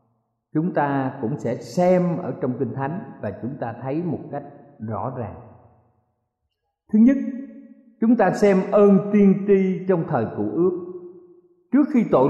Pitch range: 120-195 Hz